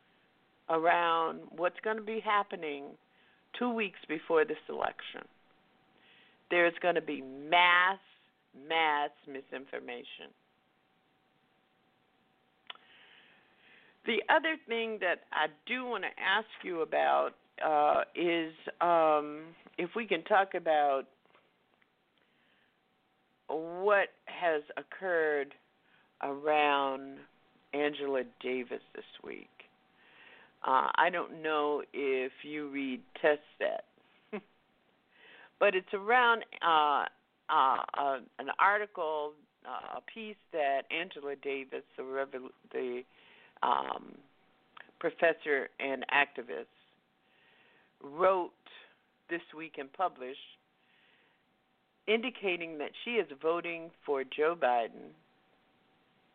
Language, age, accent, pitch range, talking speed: English, 50-69, American, 140-190 Hz, 90 wpm